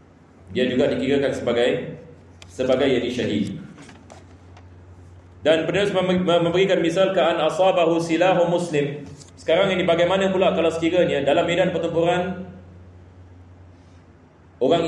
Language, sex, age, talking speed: Malay, male, 30-49, 95 wpm